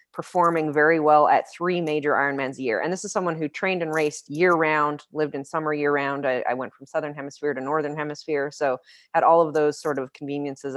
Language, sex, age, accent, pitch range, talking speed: English, female, 20-39, American, 145-170 Hz, 215 wpm